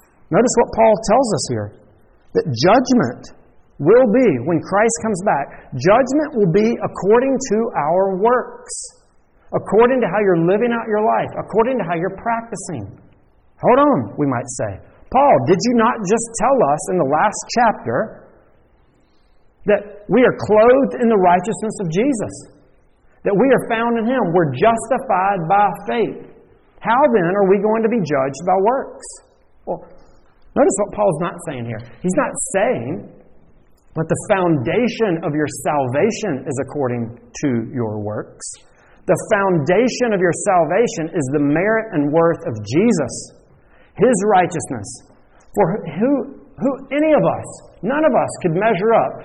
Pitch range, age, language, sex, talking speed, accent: 155-225 Hz, 50-69, English, male, 155 wpm, American